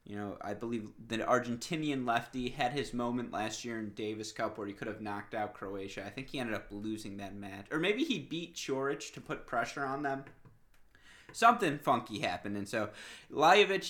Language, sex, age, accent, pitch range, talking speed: English, male, 20-39, American, 105-135 Hz, 200 wpm